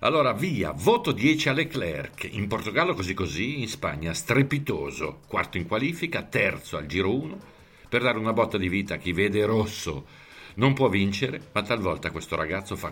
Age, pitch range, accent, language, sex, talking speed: 50-69, 85-115 Hz, native, Italian, male, 175 wpm